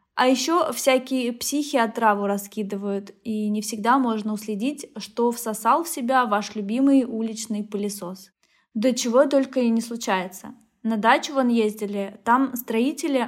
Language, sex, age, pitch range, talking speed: Russian, female, 20-39, 210-255 Hz, 140 wpm